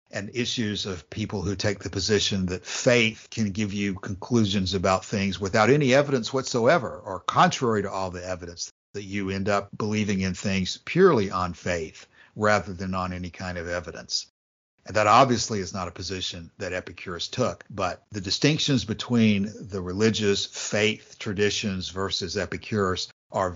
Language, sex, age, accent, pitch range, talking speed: English, male, 60-79, American, 95-110 Hz, 165 wpm